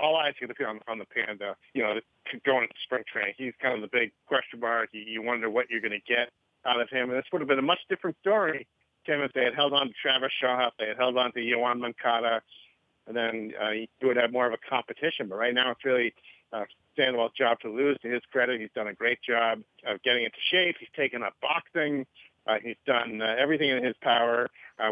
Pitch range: 115-135 Hz